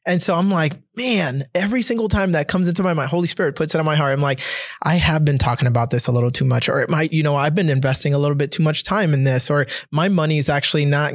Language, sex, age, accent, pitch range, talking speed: English, male, 20-39, American, 135-175 Hz, 290 wpm